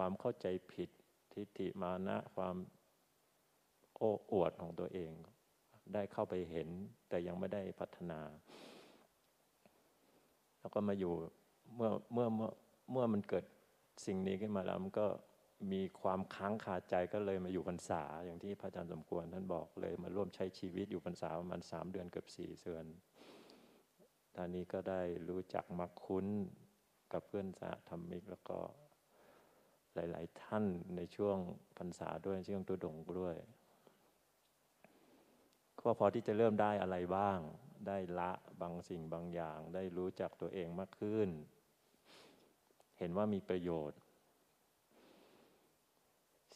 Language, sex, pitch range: Thai, male, 85-100 Hz